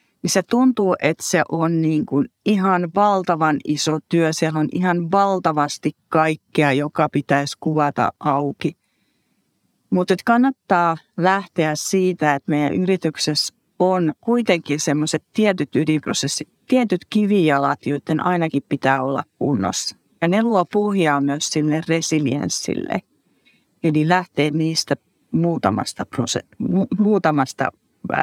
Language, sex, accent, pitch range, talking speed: Finnish, female, native, 145-180 Hz, 110 wpm